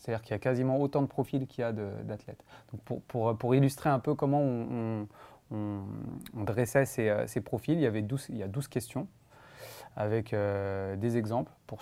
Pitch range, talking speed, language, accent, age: 110-140 Hz, 180 wpm, French, French, 20-39